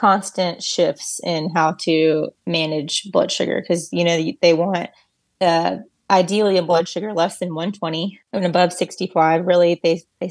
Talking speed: 180 wpm